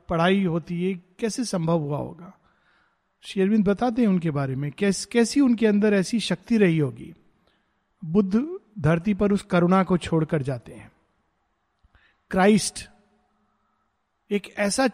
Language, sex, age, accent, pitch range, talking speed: Hindi, male, 50-69, native, 175-225 Hz, 135 wpm